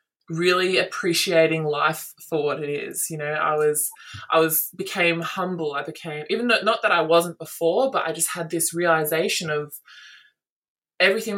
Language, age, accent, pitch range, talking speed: English, 20-39, Australian, 155-180 Hz, 165 wpm